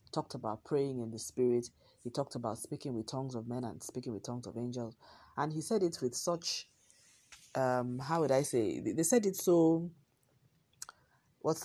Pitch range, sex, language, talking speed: 120-150 Hz, female, English, 185 wpm